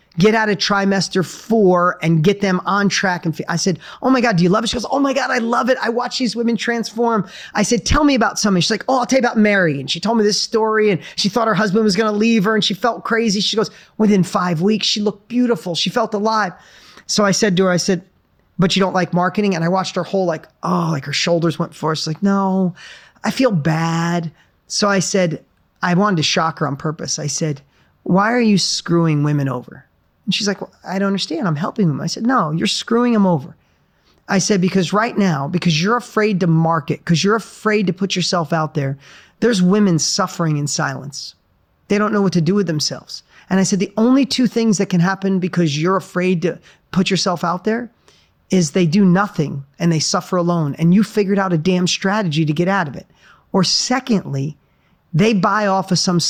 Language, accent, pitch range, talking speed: English, American, 170-215 Hz, 230 wpm